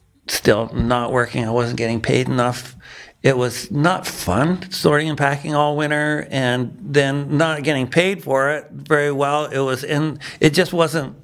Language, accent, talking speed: English, American, 170 wpm